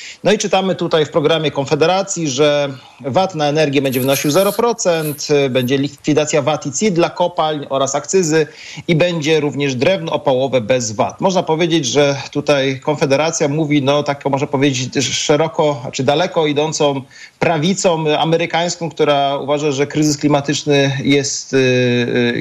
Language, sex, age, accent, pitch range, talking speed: Polish, male, 40-59, native, 145-170 Hz, 145 wpm